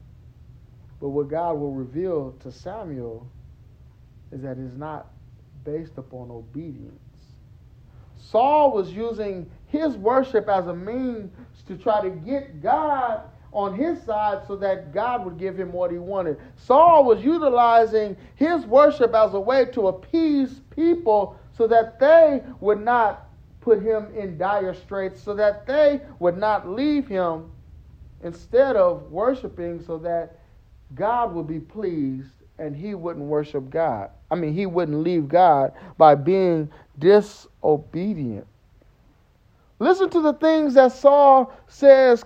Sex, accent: male, American